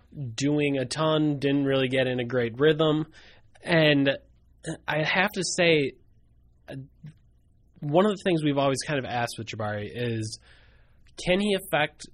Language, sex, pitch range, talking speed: English, male, 120-145 Hz, 150 wpm